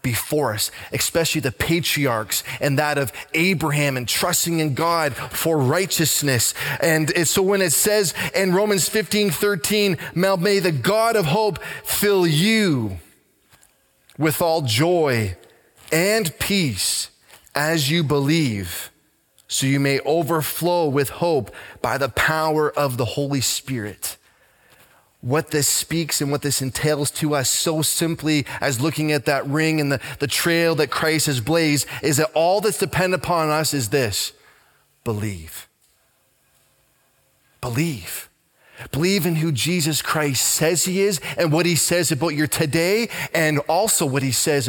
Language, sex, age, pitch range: English, male, 20-39, 135-170 Hz